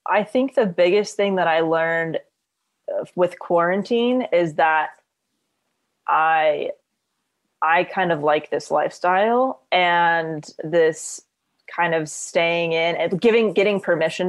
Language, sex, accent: English, female, American